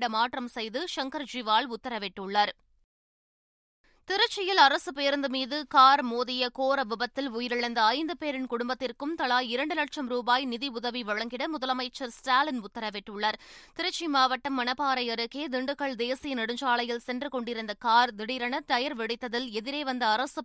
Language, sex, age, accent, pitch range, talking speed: Tamil, female, 20-39, native, 240-290 Hz, 120 wpm